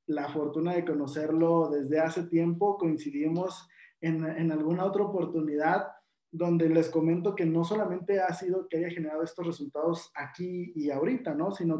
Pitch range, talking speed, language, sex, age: 155-175 Hz, 160 wpm, Spanish, male, 20-39